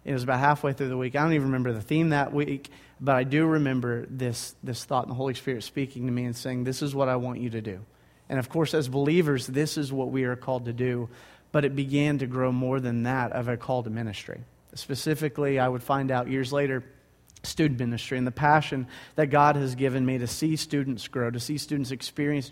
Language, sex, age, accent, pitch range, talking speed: English, male, 30-49, American, 125-145 Hz, 240 wpm